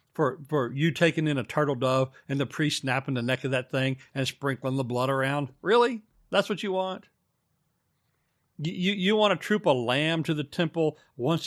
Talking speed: 200 wpm